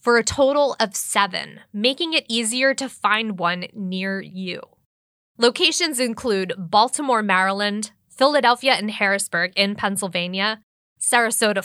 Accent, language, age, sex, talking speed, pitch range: American, English, 10-29, female, 120 wpm, 205-270 Hz